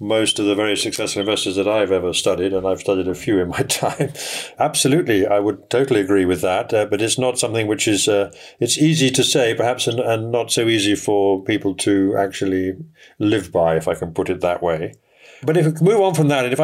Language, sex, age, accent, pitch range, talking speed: English, male, 50-69, British, 100-130 Hz, 235 wpm